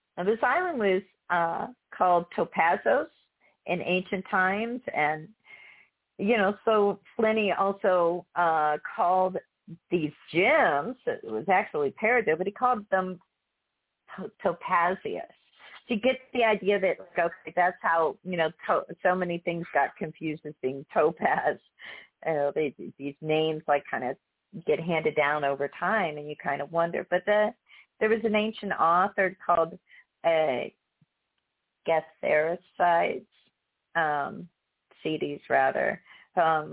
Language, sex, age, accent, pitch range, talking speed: English, female, 40-59, American, 165-220 Hz, 130 wpm